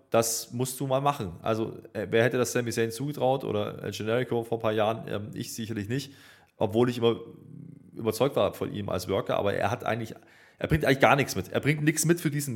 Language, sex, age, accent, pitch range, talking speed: German, male, 20-39, German, 110-140 Hz, 220 wpm